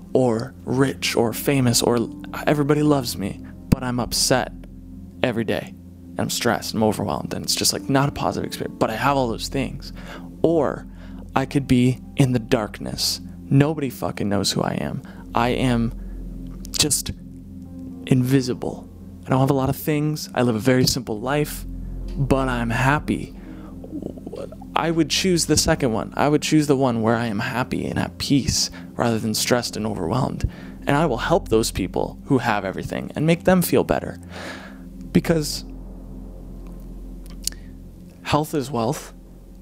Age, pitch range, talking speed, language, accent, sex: 20-39, 90-135 Hz, 160 wpm, English, American, male